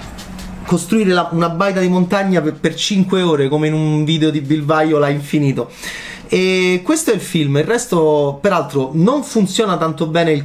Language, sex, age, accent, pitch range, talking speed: Italian, male, 30-49, native, 140-225 Hz, 180 wpm